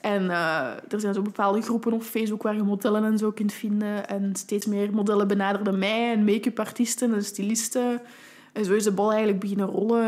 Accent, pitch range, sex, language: Dutch, 200-230 Hz, female, Dutch